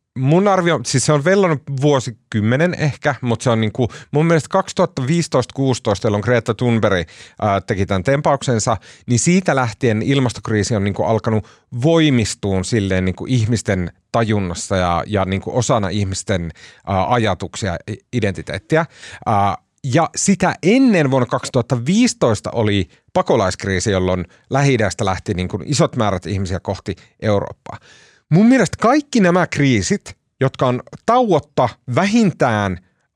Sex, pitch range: male, 105-150 Hz